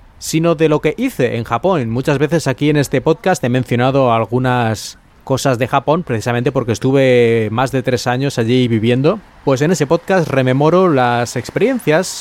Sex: male